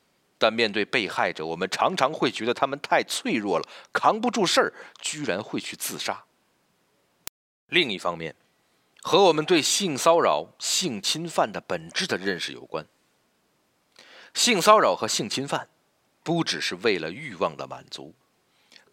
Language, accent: Chinese, native